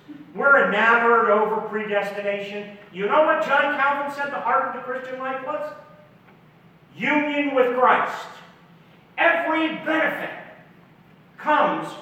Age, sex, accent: 40-59, male, American